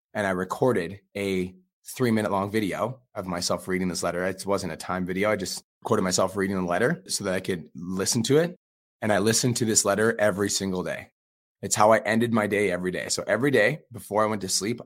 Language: English